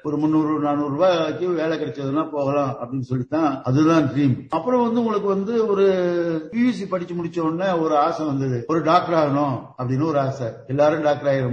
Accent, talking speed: Indian, 130 wpm